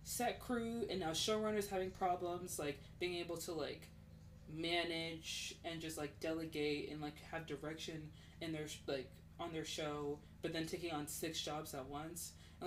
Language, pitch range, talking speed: English, 150-190 Hz, 170 wpm